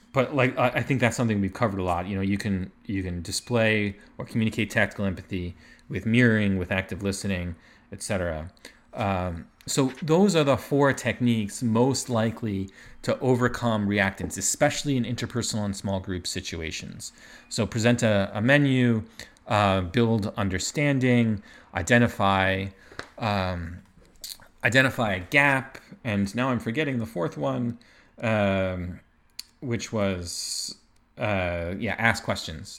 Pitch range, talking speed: 95-120 Hz, 135 wpm